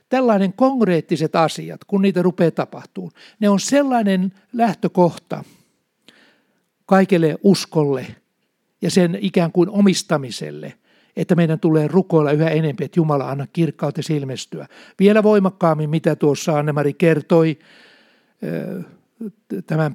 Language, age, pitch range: Finnish, 60-79, 150-185 Hz